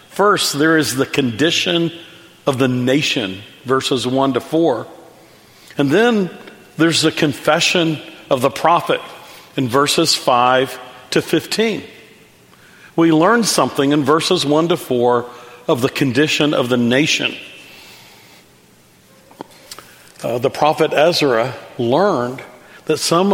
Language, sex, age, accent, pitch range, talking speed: English, male, 50-69, American, 140-185 Hz, 120 wpm